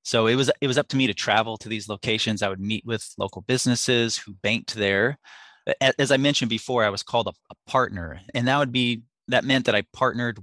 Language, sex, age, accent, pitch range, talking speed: English, male, 20-39, American, 100-120 Hz, 235 wpm